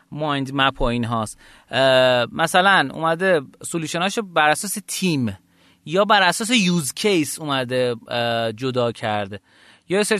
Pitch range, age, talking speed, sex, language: 120-155 Hz, 30-49, 125 wpm, male, Persian